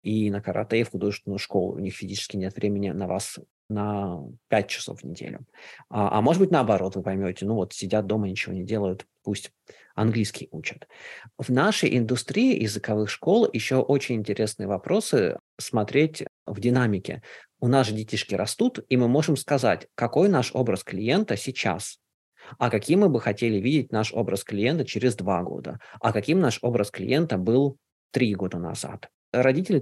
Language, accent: Russian, native